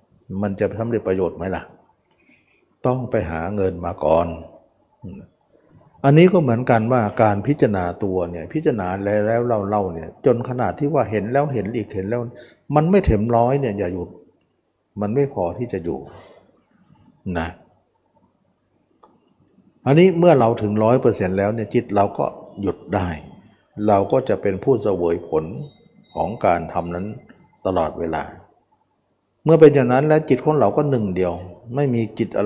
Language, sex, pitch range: Thai, male, 95-130 Hz